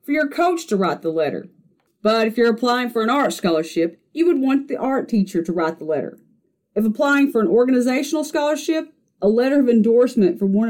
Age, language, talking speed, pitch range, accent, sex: 40-59, English, 210 wpm, 200-285 Hz, American, female